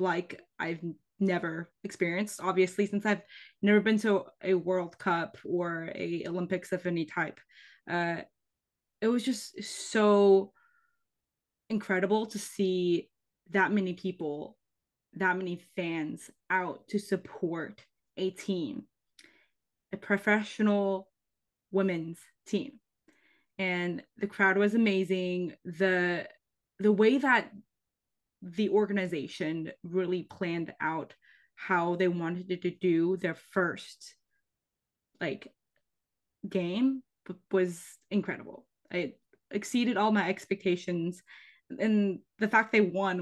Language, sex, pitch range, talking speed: English, female, 180-215 Hz, 105 wpm